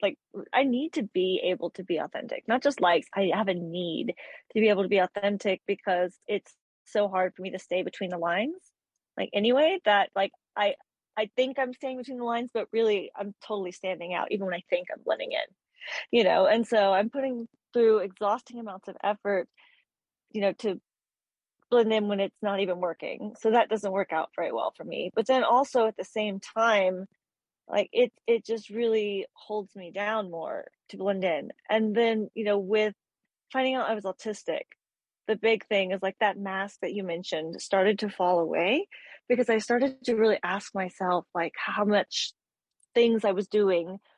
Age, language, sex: 30-49, English, female